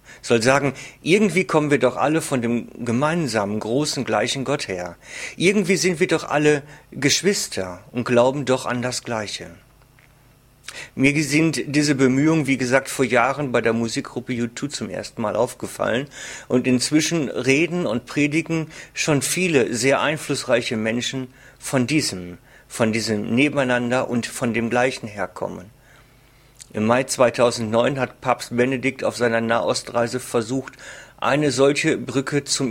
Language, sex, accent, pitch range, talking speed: German, male, German, 120-145 Hz, 140 wpm